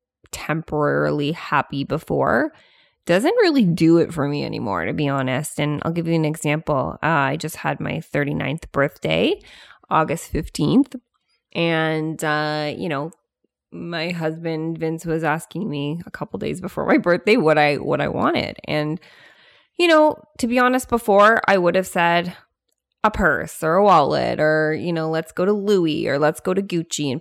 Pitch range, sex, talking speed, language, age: 155-215 Hz, female, 170 wpm, English, 20-39